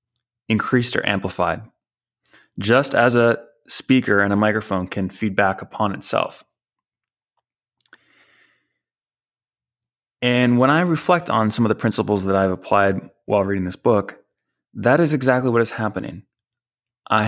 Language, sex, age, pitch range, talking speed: English, male, 20-39, 100-120 Hz, 130 wpm